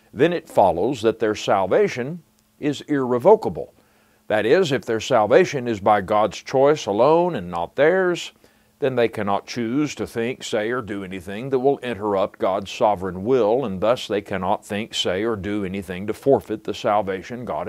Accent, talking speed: American, 175 wpm